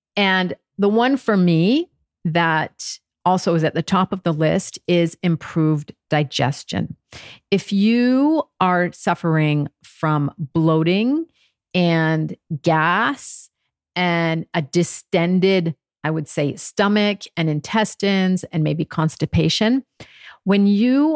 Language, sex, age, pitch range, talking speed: English, female, 50-69, 160-200 Hz, 110 wpm